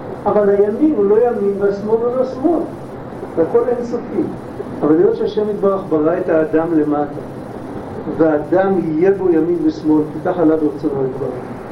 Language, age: Hebrew, 50-69